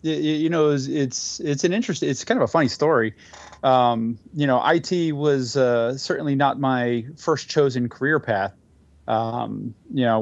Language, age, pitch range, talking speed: English, 30-49, 115-145 Hz, 165 wpm